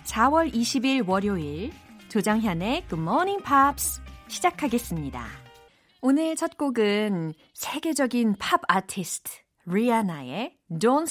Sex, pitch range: female, 175-275 Hz